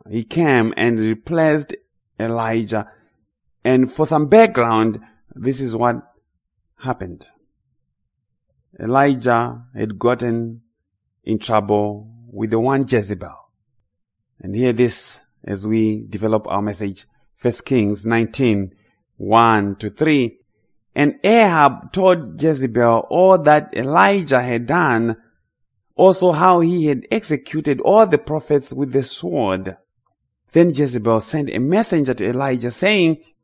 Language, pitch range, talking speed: English, 110-145 Hz, 110 wpm